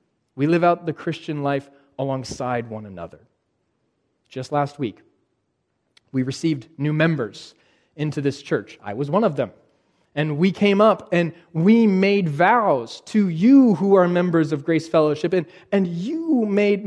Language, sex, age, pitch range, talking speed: English, male, 30-49, 140-190 Hz, 155 wpm